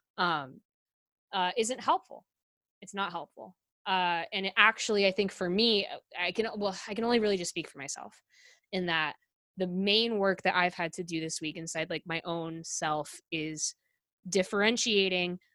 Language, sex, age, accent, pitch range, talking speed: English, female, 20-39, American, 170-205 Hz, 175 wpm